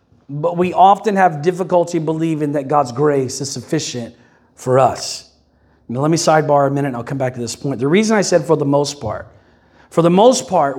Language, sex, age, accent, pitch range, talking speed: English, male, 40-59, American, 155-215 Hz, 210 wpm